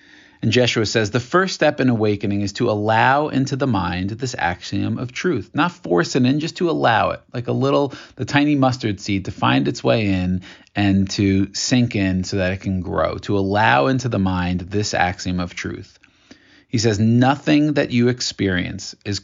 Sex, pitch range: male, 100-125 Hz